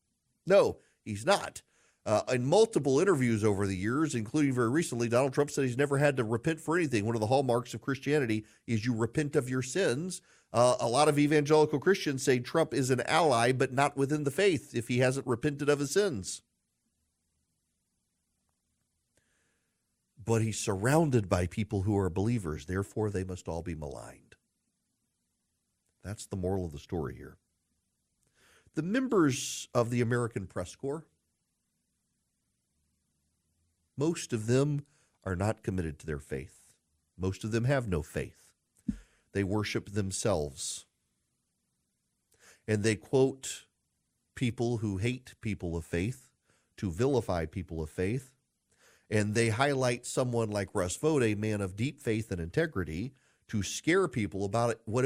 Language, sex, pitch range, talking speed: English, male, 95-135 Hz, 150 wpm